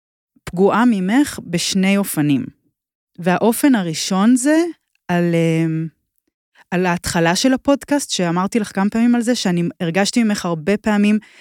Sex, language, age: female, Hebrew, 20-39